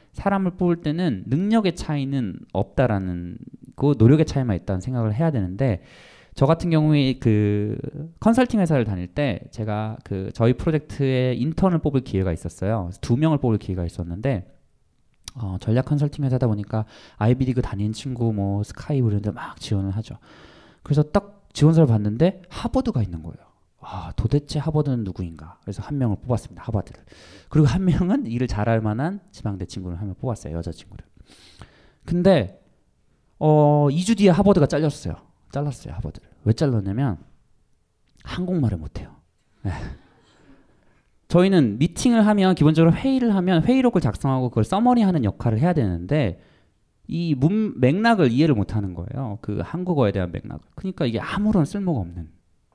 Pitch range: 105-165 Hz